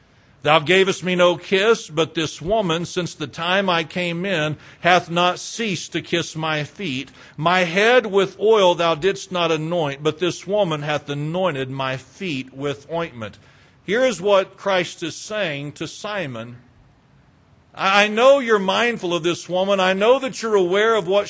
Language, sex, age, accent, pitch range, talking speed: English, male, 50-69, American, 145-205 Hz, 170 wpm